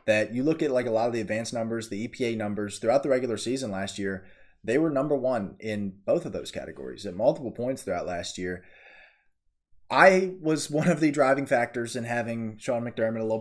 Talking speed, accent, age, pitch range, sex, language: 215 wpm, American, 20-39, 110-140 Hz, male, English